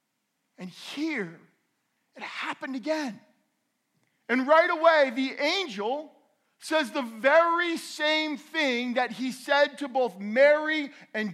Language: English